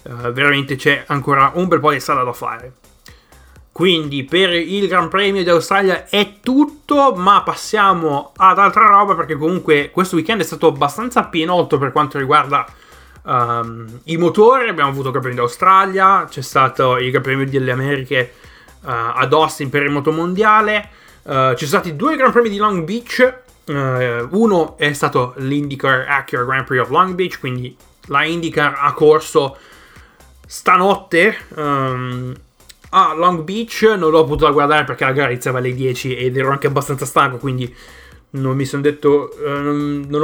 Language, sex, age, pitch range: Italian, male, 20-39, 130-170 Hz